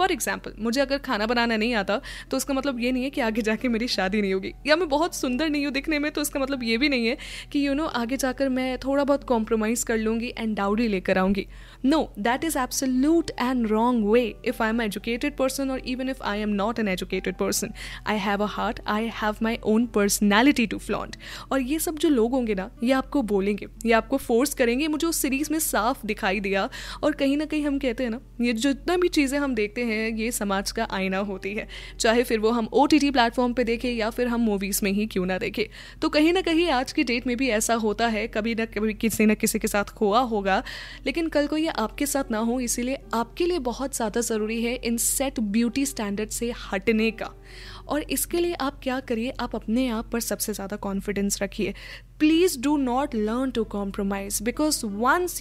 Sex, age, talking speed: female, 10-29, 220 wpm